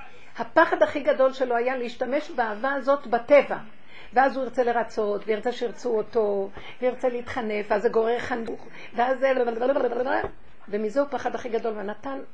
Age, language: 50-69, Hebrew